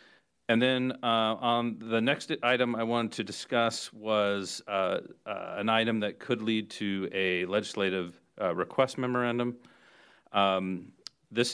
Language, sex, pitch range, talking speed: English, male, 95-110 Hz, 140 wpm